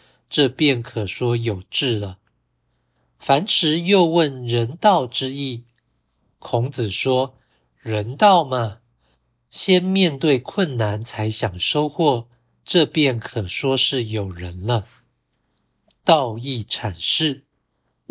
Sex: male